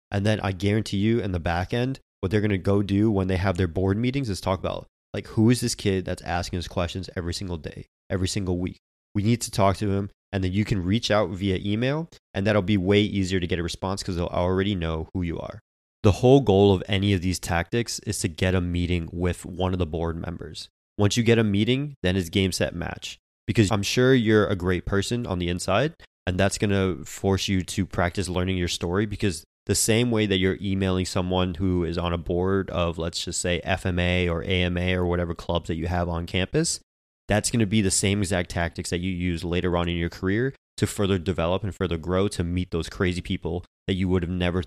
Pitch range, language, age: 85-100 Hz, English, 20-39